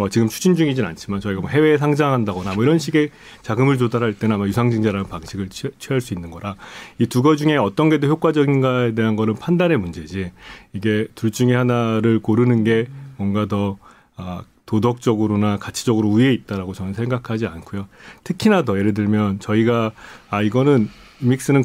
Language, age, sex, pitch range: Korean, 30-49, male, 105-135 Hz